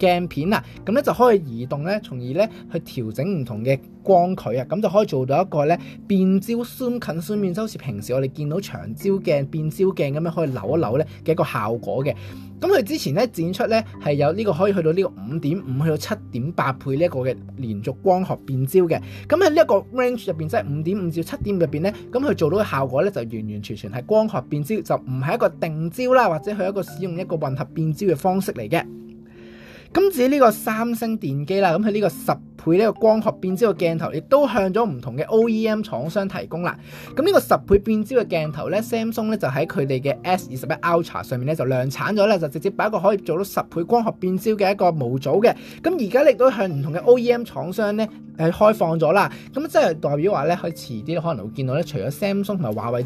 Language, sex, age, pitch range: Chinese, male, 20-39, 140-210 Hz